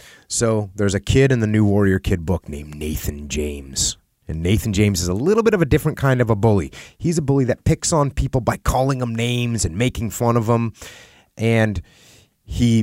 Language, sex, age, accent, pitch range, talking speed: English, male, 30-49, American, 95-140 Hz, 210 wpm